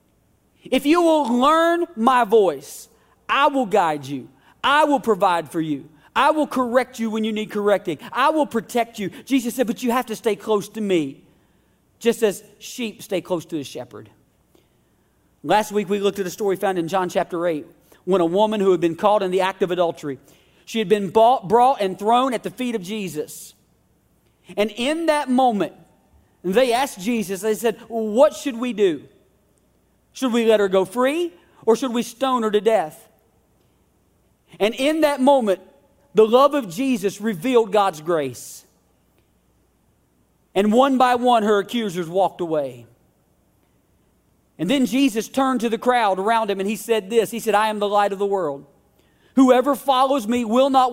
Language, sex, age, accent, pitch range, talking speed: English, male, 40-59, American, 190-255 Hz, 180 wpm